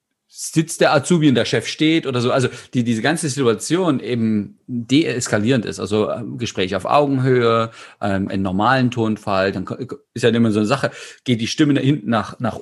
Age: 40-59